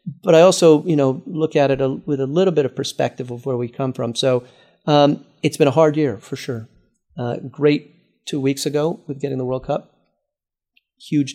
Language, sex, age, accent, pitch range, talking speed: English, male, 40-59, American, 125-155 Hz, 210 wpm